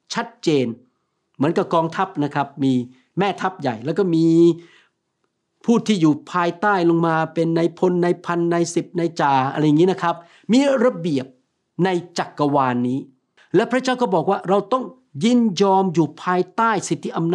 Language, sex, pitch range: Thai, male, 145-200 Hz